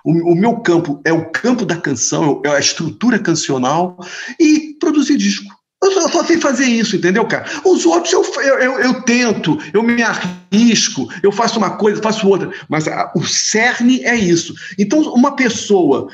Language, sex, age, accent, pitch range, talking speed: Portuguese, male, 50-69, Brazilian, 175-255 Hz, 170 wpm